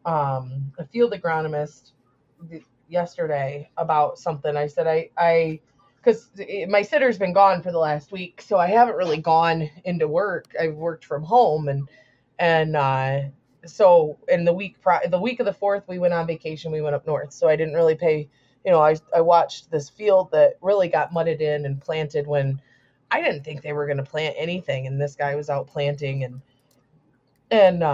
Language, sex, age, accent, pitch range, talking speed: English, female, 20-39, American, 145-185 Hz, 190 wpm